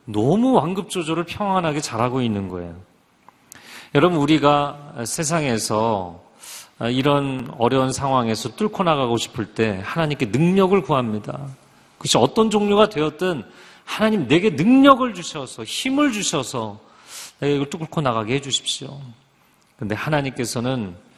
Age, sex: 40-59, male